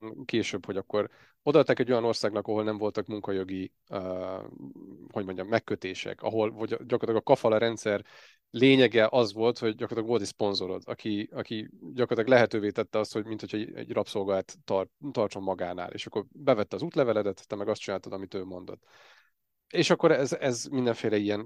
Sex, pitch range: male, 100-120 Hz